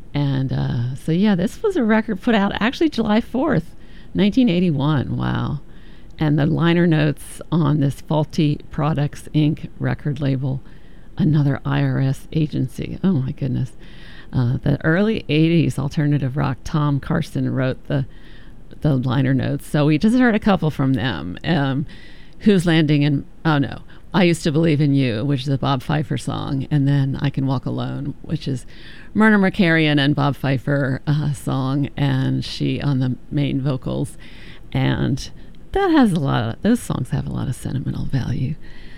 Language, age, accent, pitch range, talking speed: English, 50-69, American, 135-160 Hz, 165 wpm